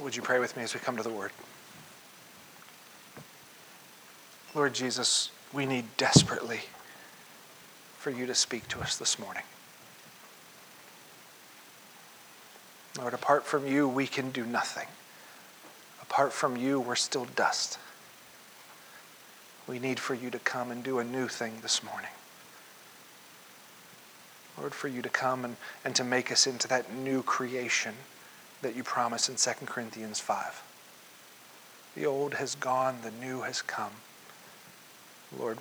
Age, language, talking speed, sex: 40-59, English, 135 wpm, male